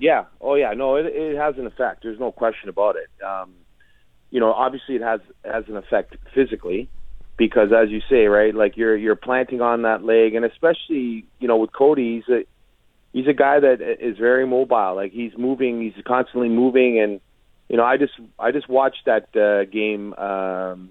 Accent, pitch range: American, 105-130 Hz